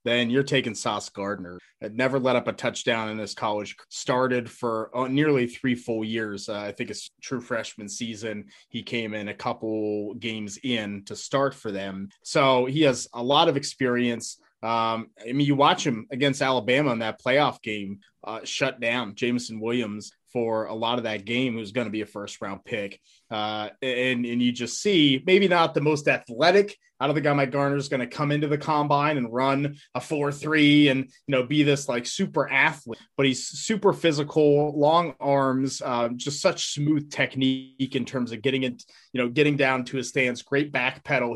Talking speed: 200 wpm